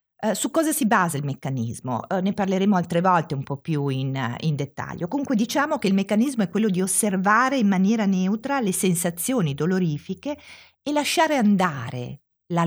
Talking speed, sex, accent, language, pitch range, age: 175 wpm, female, native, Italian, 165-240 Hz, 50-69